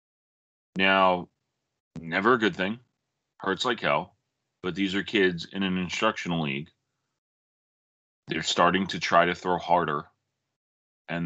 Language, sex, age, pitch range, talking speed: English, male, 30-49, 85-105 Hz, 130 wpm